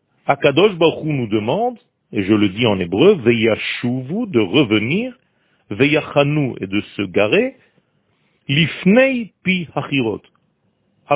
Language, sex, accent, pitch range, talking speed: French, male, French, 115-180 Hz, 120 wpm